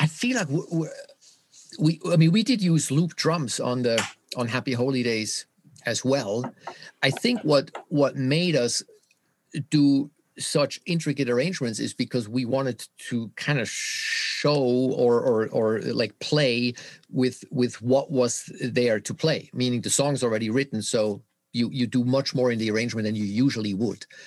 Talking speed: 165 wpm